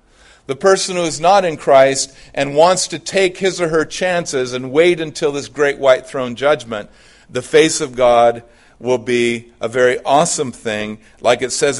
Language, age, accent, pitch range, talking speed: English, 50-69, American, 120-170 Hz, 185 wpm